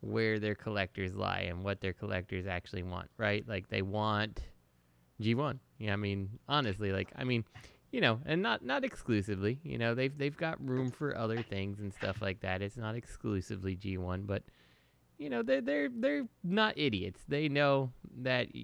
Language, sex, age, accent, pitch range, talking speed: English, male, 20-39, American, 95-120 Hz, 185 wpm